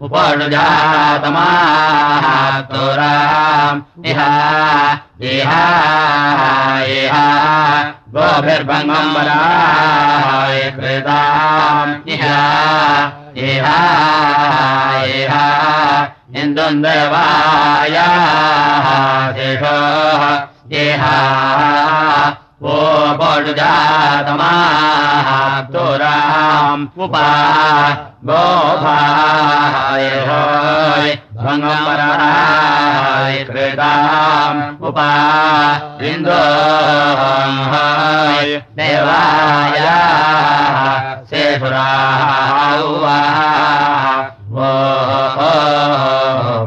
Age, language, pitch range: 40-59, Russian, 135-150 Hz